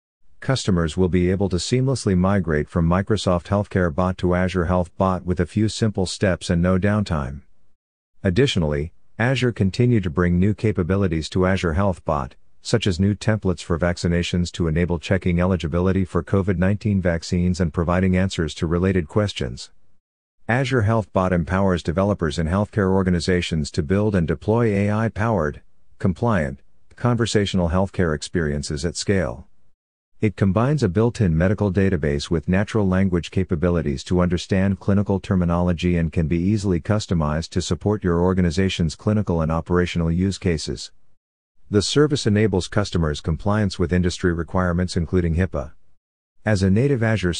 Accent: American